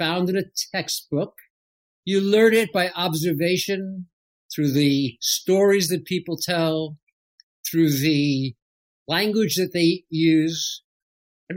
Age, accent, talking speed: 50-69, American, 115 wpm